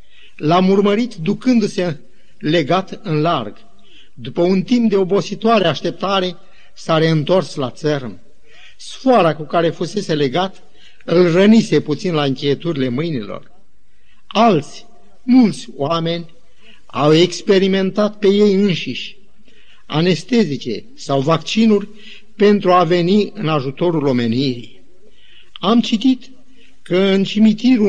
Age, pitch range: 50-69, 160-210 Hz